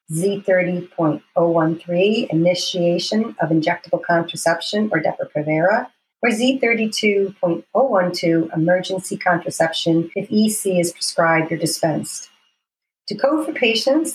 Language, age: English, 40-59